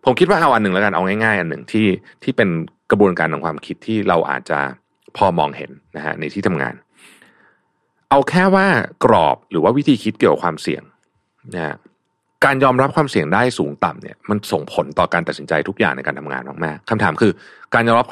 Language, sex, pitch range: Thai, male, 90-145 Hz